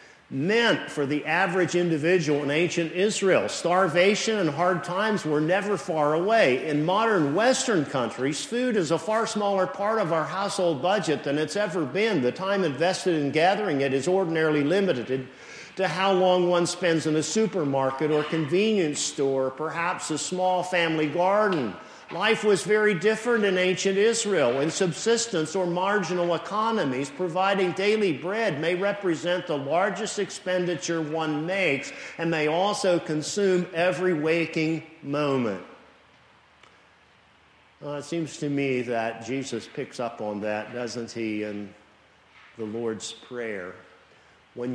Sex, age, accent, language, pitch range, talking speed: male, 50-69, American, English, 140-190 Hz, 140 wpm